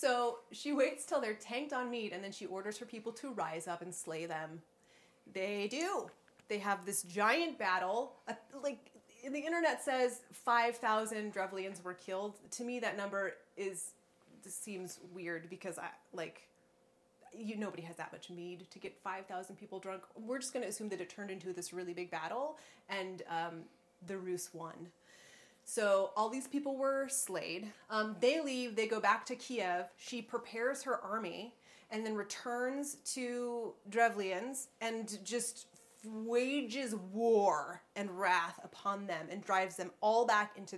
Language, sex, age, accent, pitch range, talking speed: English, female, 30-49, American, 185-245 Hz, 165 wpm